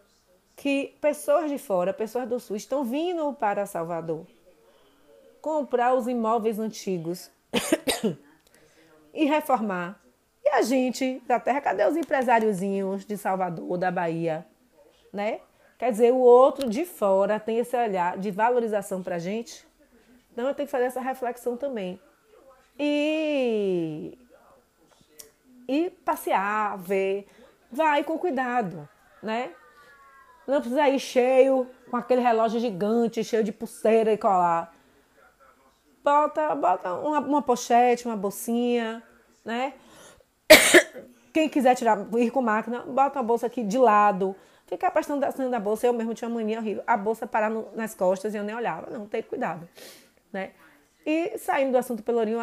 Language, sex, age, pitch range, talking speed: Portuguese, female, 30-49, 205-265 Hz, 140 wpm